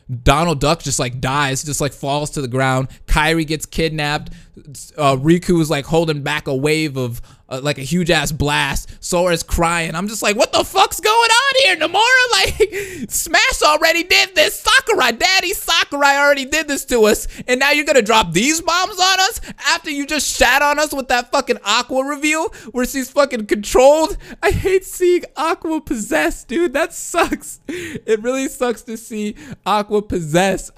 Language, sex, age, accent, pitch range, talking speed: English, male, 20-39, American, 130-215 Hz, 180 wpm